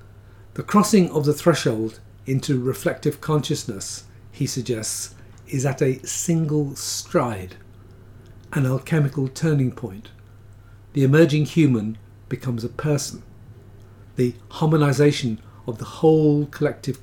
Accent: British